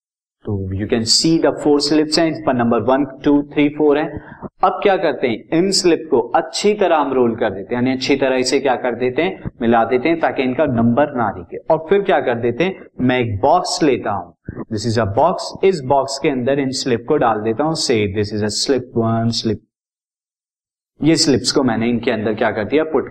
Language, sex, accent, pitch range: Hindi, male, native, 125-165 Hz